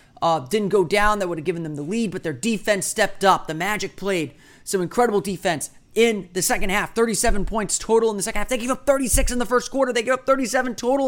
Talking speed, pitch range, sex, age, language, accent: 250 wpm, 160-220 Hz, male, 30-49, English, American